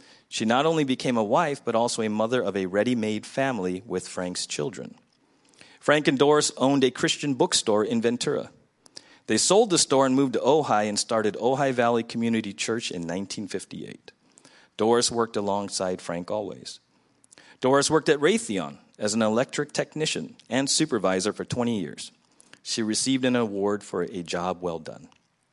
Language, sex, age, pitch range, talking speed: English, male, 40-59, 105-135 Hz, 160 wpm